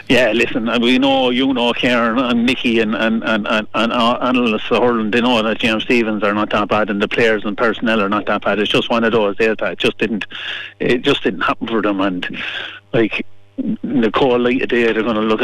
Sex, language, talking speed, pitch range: male, English, 235 wpm, 110-135 Hz